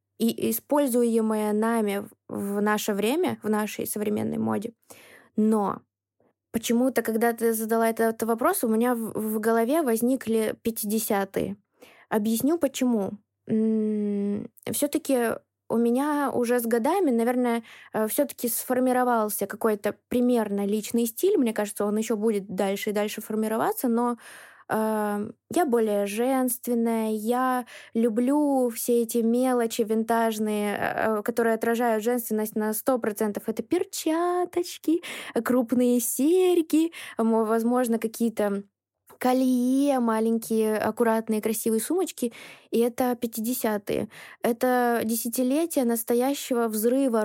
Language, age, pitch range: Russian, 20-39, 220-255 Hz